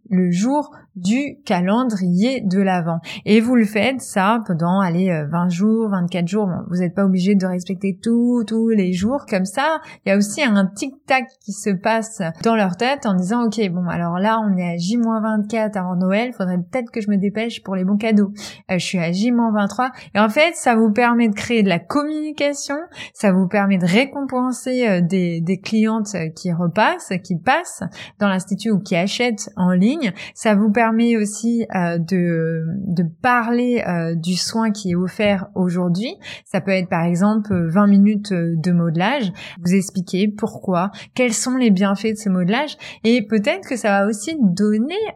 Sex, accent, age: female, French, 20-39